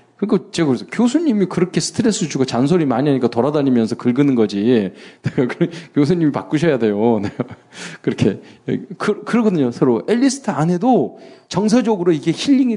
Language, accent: Korean, native